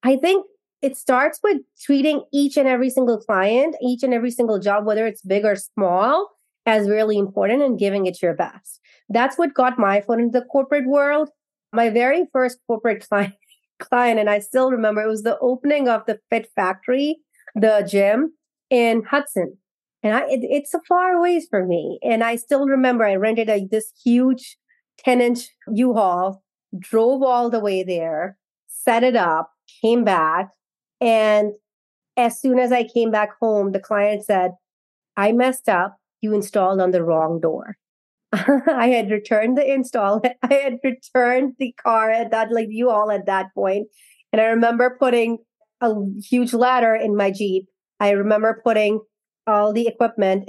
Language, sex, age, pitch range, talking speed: English, female, 30-49, 205-255 Hz, 170 wpm